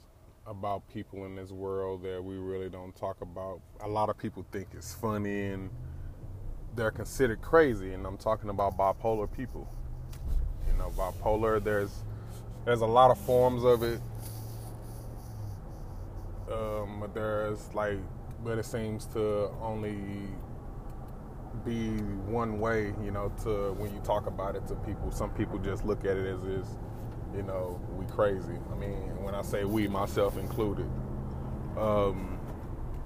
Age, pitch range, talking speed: 20-39, 100-115 Hz, 150 wpm